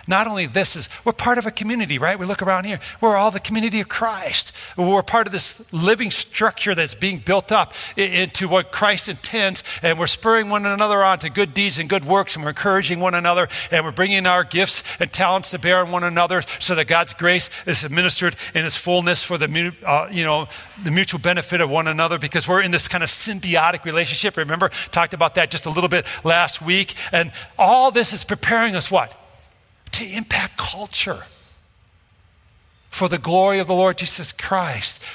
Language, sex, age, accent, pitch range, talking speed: English, male, 50-69, American, 160-195 Hz, 205 wpm